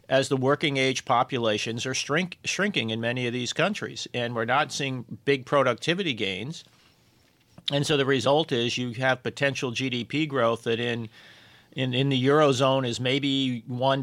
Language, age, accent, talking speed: English, 40-59, American, 165 wpm